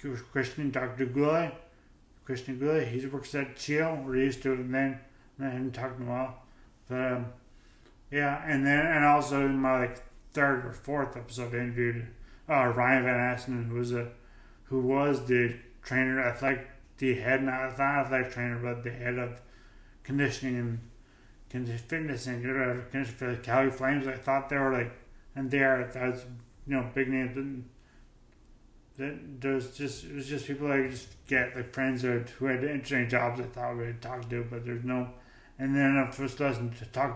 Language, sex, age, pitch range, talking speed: English, male, 30-49, 125-135 Hz, 190 wpm